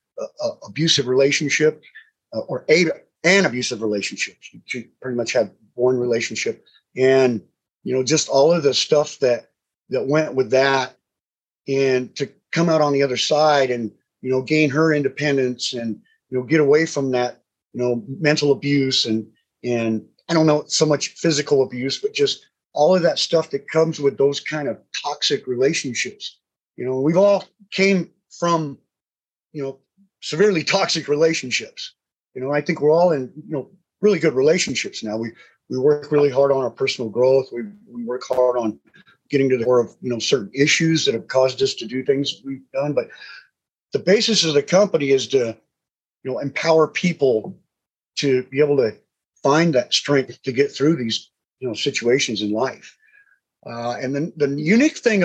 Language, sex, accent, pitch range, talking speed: English, male, American, 125-160 Hz, 180 wpm